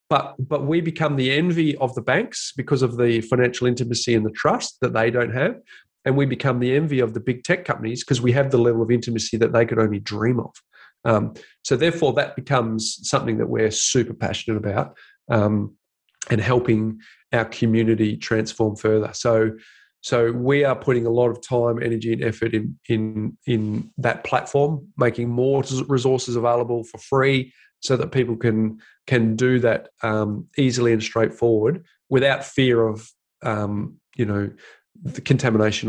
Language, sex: English, male